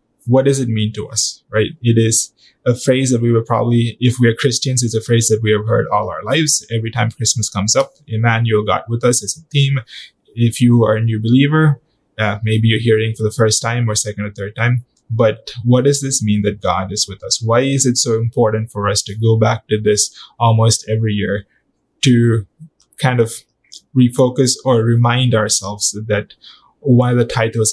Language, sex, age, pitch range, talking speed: English, male, 20-39, 110-125 Hz, 210 wpm